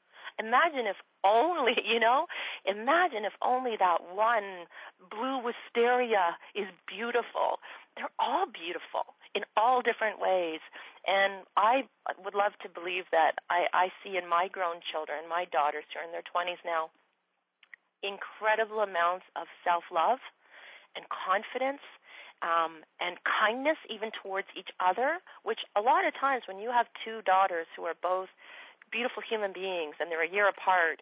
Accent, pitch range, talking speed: American, 175-220 Hz, 150 wpm